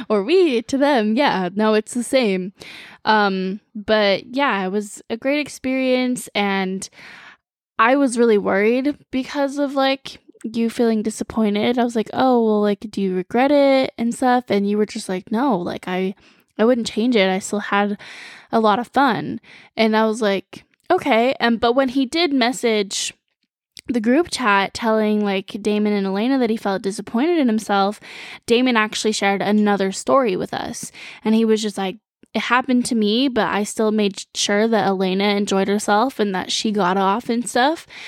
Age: 10-29